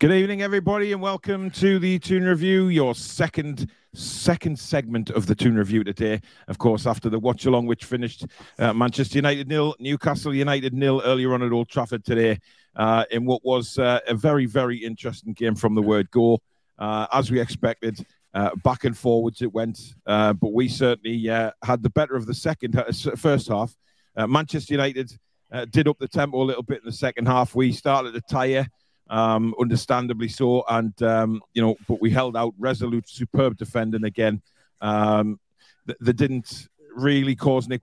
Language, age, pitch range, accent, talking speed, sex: English, 40-59, 115-135 Hz, British, 185 wpm, male